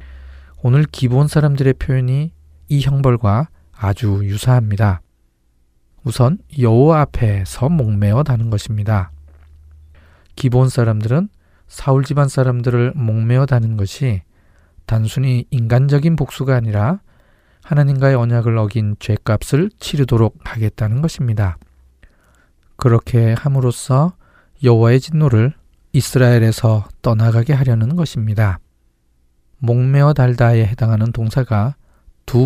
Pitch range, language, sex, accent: 105-135 Hz, Korean, male, native